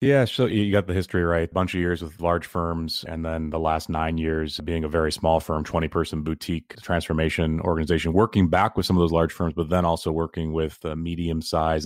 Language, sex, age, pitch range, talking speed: English, male, 30-49, 80-90 Hz, 235 wpm